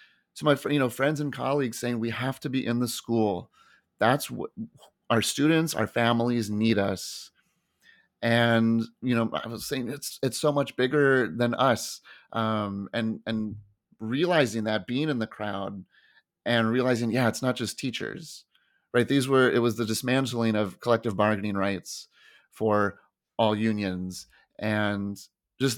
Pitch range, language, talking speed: 105-130 Hz, English, 160 wpm